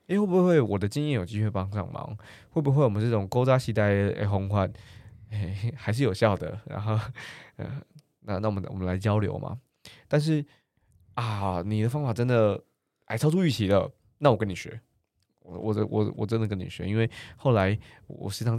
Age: 20-39